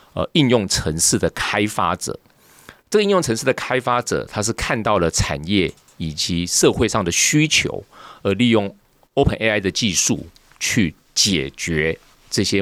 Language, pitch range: Chinese, 85-110 Hz